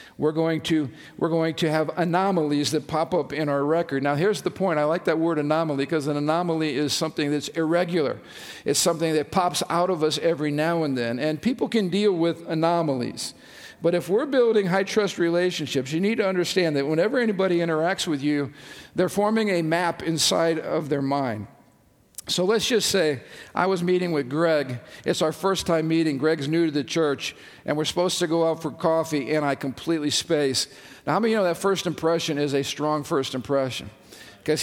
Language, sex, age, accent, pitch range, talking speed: English, male, 50-69, American, 155-195 Hz, 205 wpm